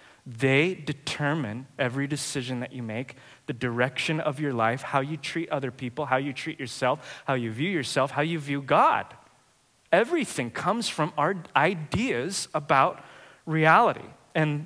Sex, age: male, 20-39